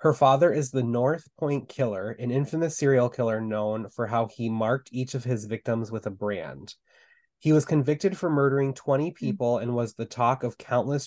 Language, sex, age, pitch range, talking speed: English, male, 20-39, 115-140 Hz, 195 wpm